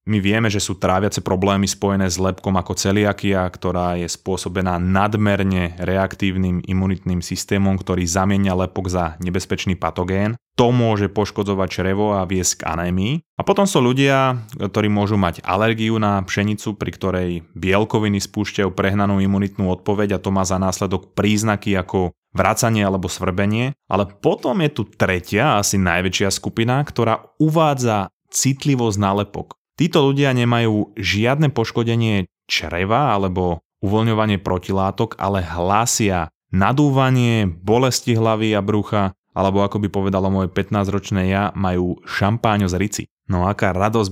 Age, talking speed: 20-39, 140 wpm